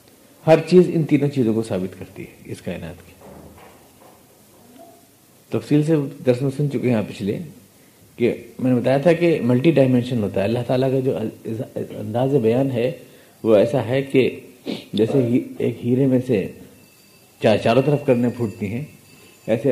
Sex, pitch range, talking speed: male, 110-135 Hz, 160 wpm